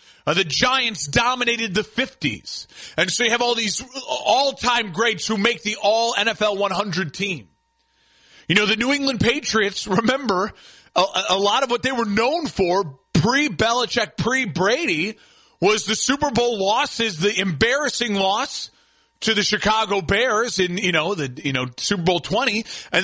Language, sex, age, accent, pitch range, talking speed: English, male, 30-49, American, 195-255 Hz, 160 wpm